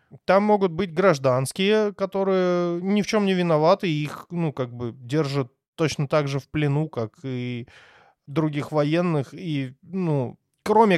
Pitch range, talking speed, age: 140-190 Hz, 155 wpm, 20-39